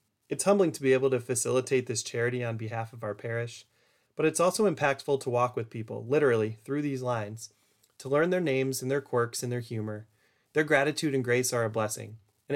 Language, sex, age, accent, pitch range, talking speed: English, male, 30-49, American, 110-140 Hz, 210 wpm